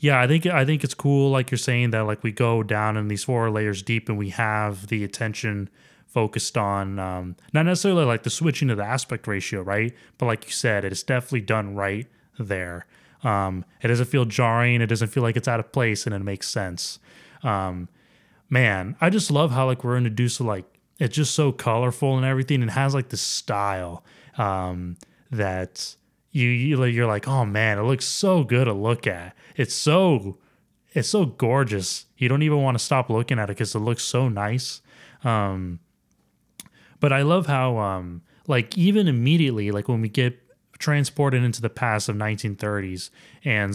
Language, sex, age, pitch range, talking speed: English, male, 20-39, 105-135 Hz, 190 wpm